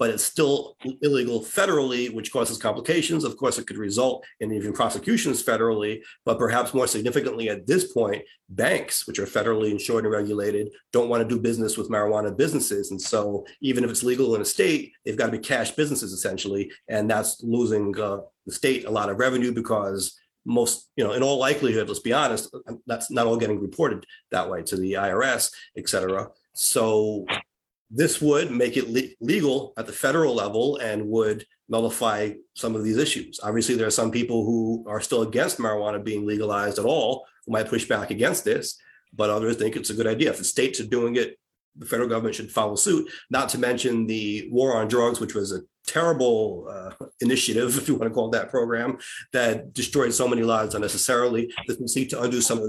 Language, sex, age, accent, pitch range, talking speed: English, male, 30-49, American, 105-125 Hz, 200 wpm